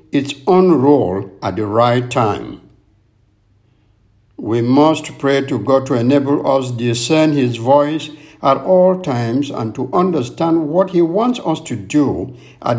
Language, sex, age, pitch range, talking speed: English, male, 60-79, 115-150 Hz, 150 wpm